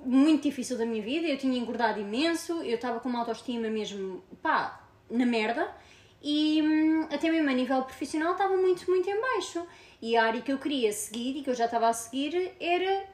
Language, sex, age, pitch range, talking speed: Portuguese, female, 20-39, 235-320 Hz, 205 wpm